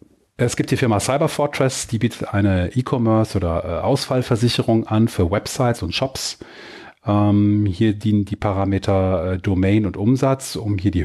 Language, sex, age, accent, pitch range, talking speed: German, male, 30-49, German, 95-115 Hz, 145 wpm